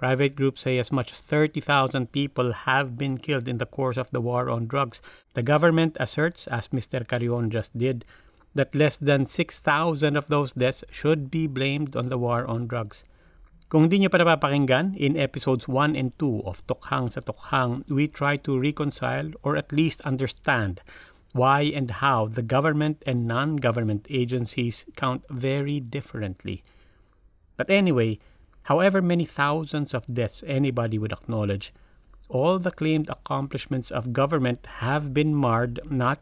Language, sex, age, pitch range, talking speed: English, male, 50-69, 120-150 Hz, 155 wpm